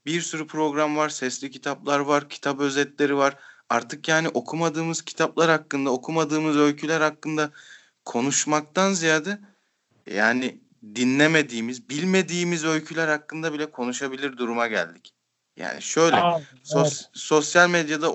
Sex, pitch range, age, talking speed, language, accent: male, 130-160 Hz, 30-49, 110 wpm, Turkish, native